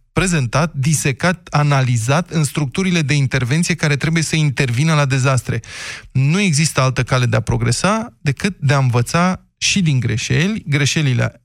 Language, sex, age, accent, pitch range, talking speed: Romanian, male, 20-39, native, 125-165 Hz, 145 wpm